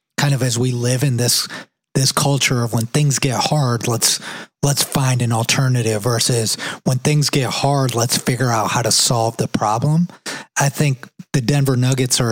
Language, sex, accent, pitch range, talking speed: English, male, American, 120-145 Hz, 185 wpm